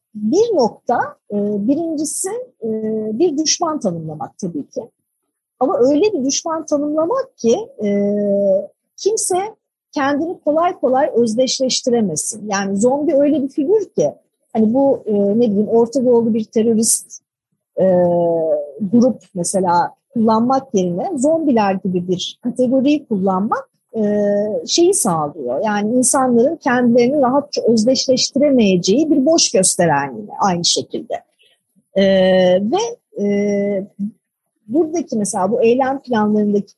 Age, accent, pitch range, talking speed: 50-69, native, 205-290 Hz, 105 wpm